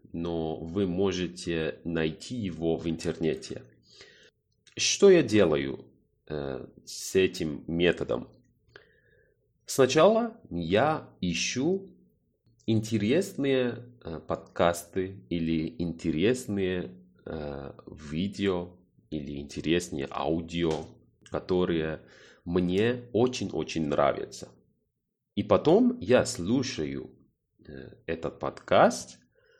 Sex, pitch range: male, 80-110 Hz